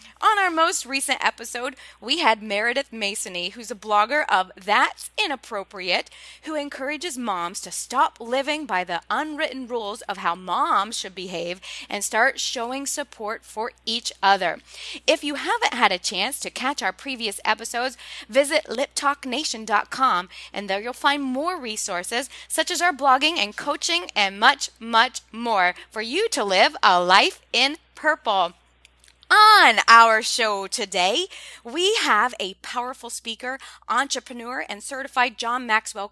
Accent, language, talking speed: American, English, 145 wpm